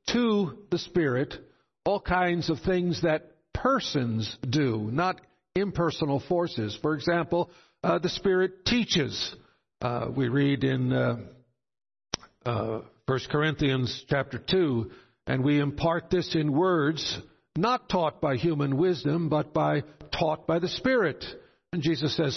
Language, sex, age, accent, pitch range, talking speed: English, male, 60-79, American, 135-175 Hz, 130 wpm